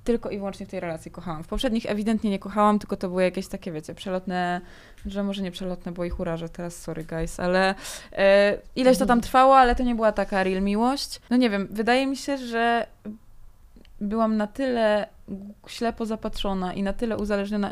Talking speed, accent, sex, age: 195 wpm, native, female, 20-39